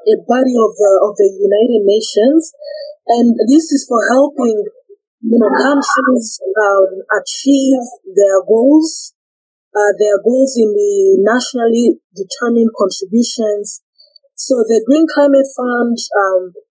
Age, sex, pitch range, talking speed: 20-39, female, 210-275 Hz, 120 wpm